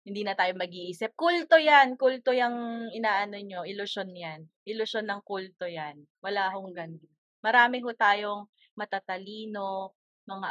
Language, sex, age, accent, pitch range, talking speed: Filipino, female, 20-39, native, 185-245 Hz, 135 wpm